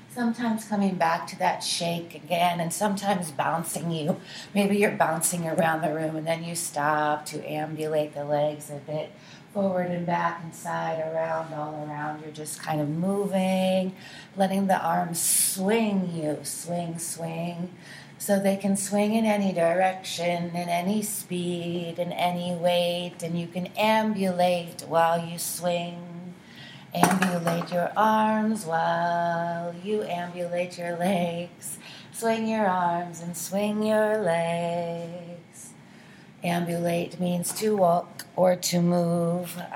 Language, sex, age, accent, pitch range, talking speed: English, female, 30-49, American, 165-185 Hz, 135 wpm